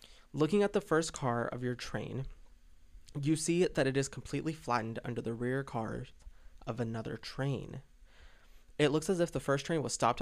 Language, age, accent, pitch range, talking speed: English, 20-39, American, 115-140 Hz, 180 wpm